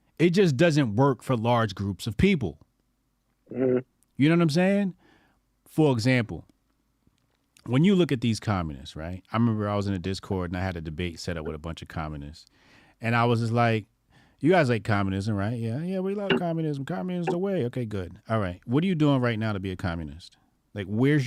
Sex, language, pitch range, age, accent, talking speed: male, English, 105-145 Hz, 30-49, American, 215 wpm